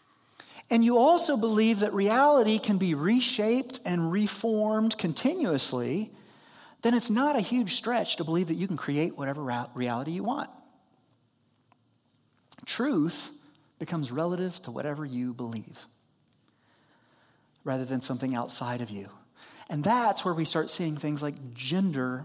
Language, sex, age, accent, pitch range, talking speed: English, male, 40-59, American, 135-205 Hz, 135 wpm